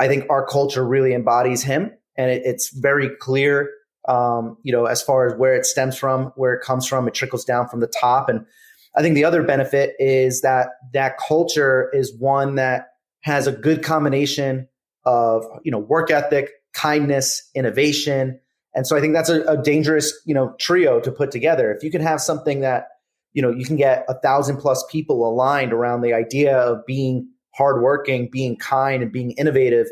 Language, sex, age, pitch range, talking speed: English, male, 30-49, 130-150 Hz, 195 wpm